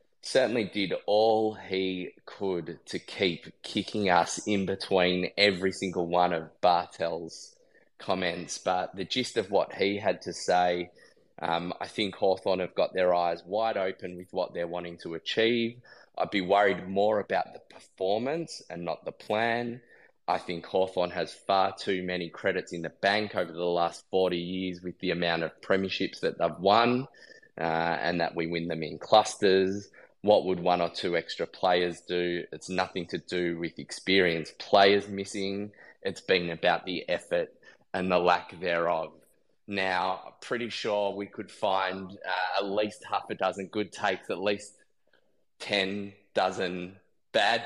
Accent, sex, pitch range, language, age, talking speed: Australian, male, 90-105 Hz, English, 20-39, 160 wpm